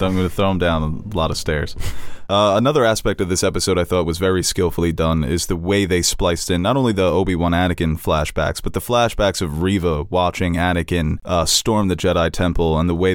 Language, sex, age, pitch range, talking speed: English, male, 20-39, 85-100 Hz, 225 wpm